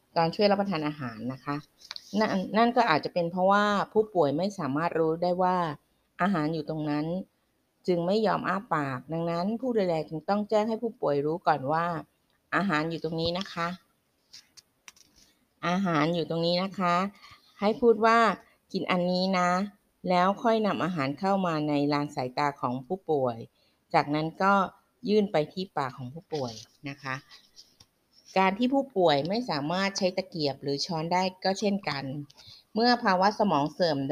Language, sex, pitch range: Thai, female, 150-190 Hz